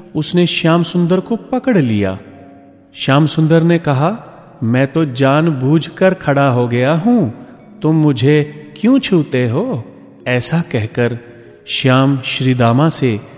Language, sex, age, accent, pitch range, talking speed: Hindi, male, 40-59, native, 120-175 Hz, 130 wpm